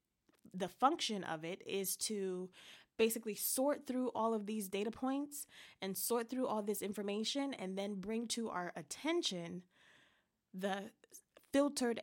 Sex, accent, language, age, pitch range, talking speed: female, American, English, 20-39, 185-235 Hz, 140 wpm